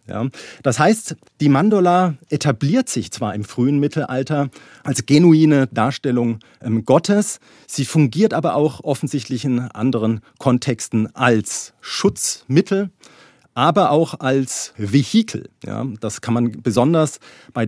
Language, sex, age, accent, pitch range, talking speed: German, male, 40-59, German, 115-150 Hz, 120 wpm